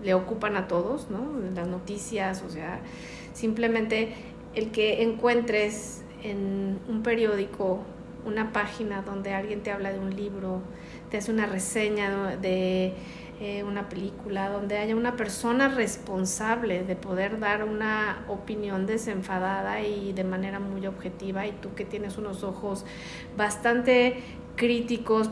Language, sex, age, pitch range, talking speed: Spanish, female, 40-59, 195-235 Hz, 135 wpm